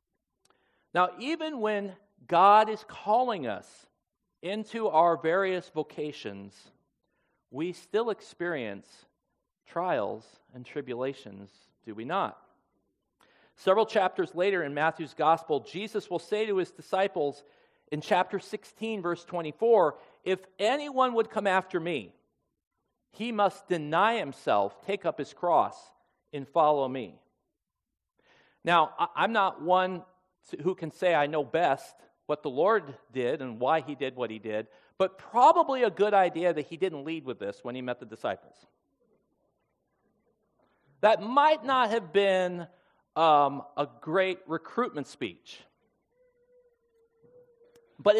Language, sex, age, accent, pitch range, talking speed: English, male, 40-59, American, 155-220 Hz, 125 wpm